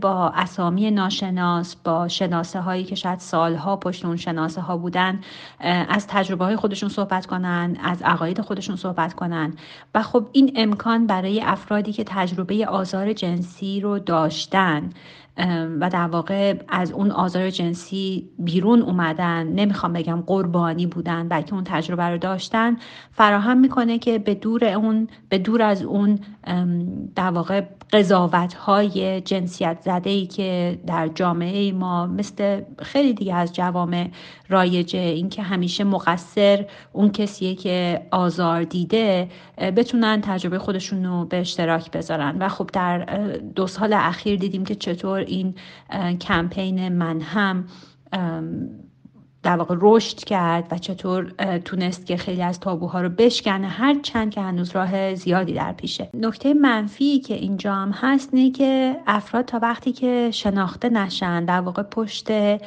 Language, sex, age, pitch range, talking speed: Persian, female, 40-59, 175-205 Hz, 140 wpm